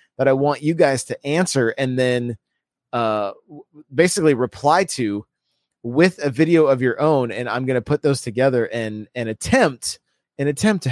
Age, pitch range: 30-49, 120-155 Hz